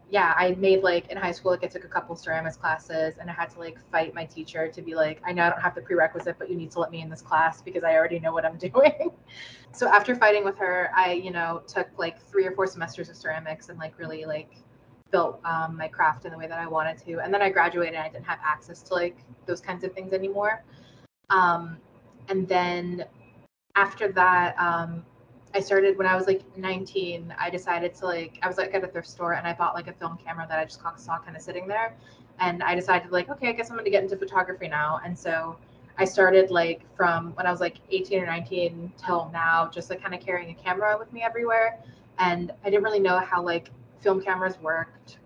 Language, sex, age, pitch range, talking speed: English, female, 20-39, 165-190 Hz, 245 wpm